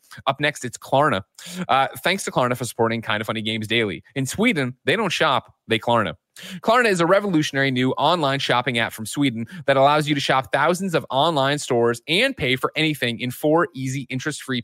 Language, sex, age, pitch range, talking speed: English, male, 30-49, 115-150 Hz, 200 wpm